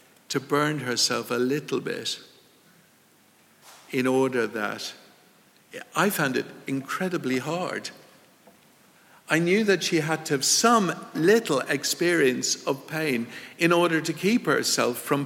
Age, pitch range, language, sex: 60-79, 125-155 Hz, English, male